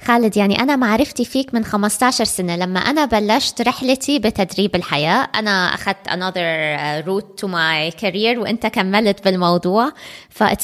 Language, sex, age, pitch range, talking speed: Arabic, female, 20-39, 180-235 Hz, 140 wpm